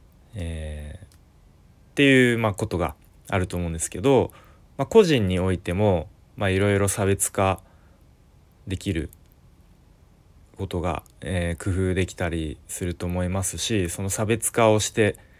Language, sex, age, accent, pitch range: Japanese, male, 20-39, native, 85-105 Hz